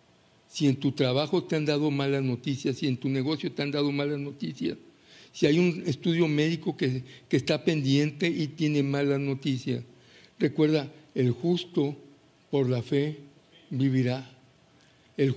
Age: 60-79